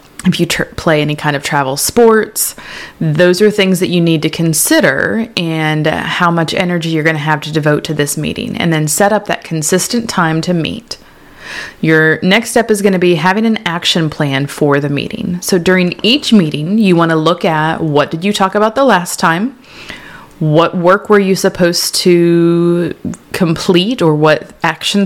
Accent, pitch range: American, 155-200 Hz